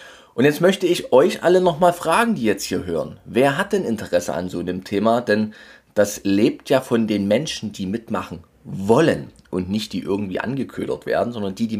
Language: German